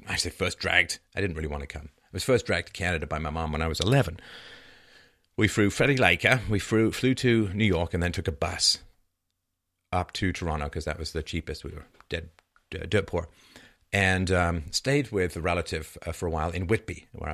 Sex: male